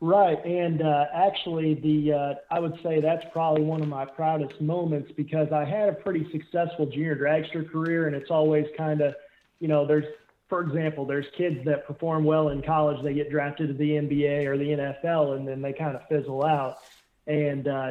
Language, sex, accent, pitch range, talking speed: English, male, American, 145-165 Hz, 200 wpm